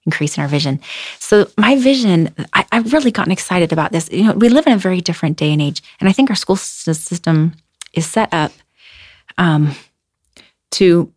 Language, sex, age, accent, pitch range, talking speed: English, female, 30-49, American, 155-190 Hz, 195 wpm